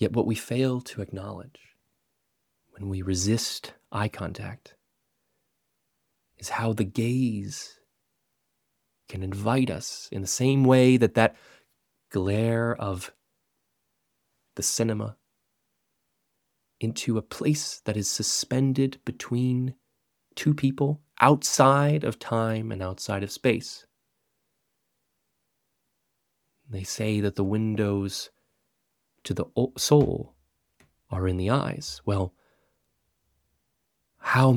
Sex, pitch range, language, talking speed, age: male, 90-125 Hz, English, 100 wpm, 30-49